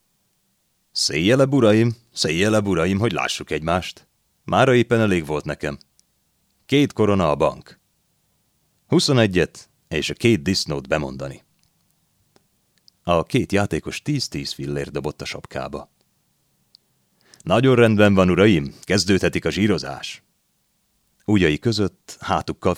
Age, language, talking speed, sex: 30-49, Hungarian, 105 wpm, male